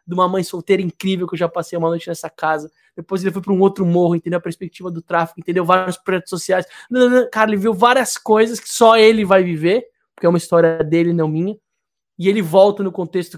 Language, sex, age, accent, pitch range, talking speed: Portuguese, male, 20-39, Brazilian, 180-240 Hz, 230 wpm